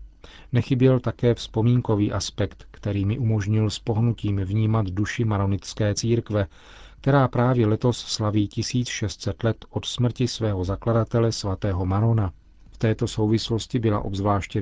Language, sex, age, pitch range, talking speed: Czech, male, 40-59, 100-115 Hz, 125 wpm